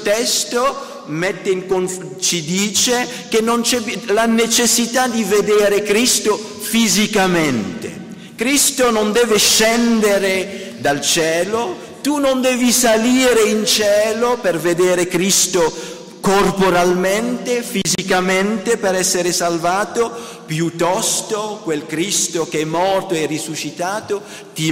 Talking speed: 105 wpm